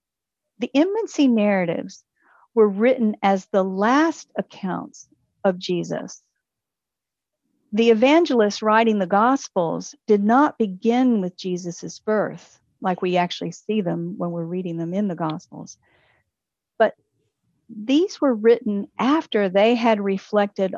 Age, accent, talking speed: 50-69, American, 120 wpm